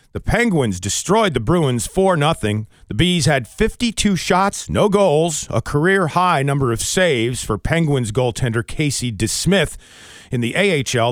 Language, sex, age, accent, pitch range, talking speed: English, male, 40-59, American, 120-185 Hz, 140 wpm